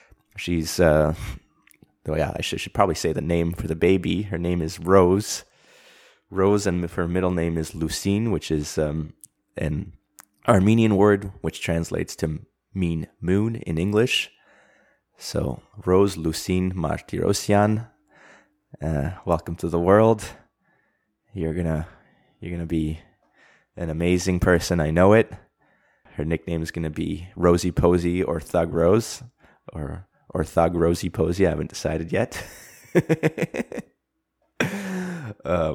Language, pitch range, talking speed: English, 80-100 Hz, 130 wpm